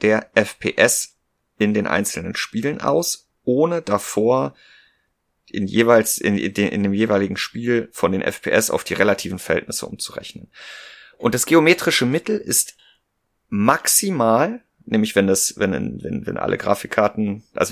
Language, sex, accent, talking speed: German, male, German, 140 wpm